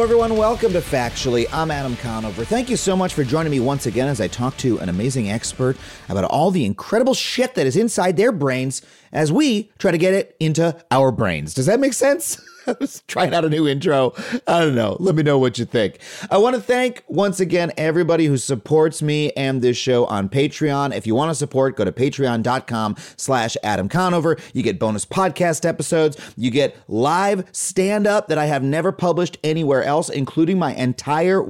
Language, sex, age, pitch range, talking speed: English, male, 30-49, 125-180 Hz, 200 wpm